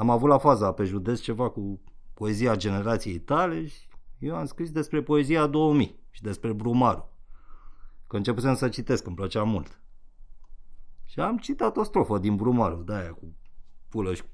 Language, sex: Romanian, male